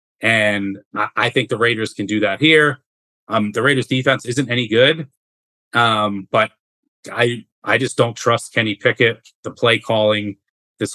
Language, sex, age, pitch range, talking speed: English, male, 30-49, 105-130 Hz, 160 wpm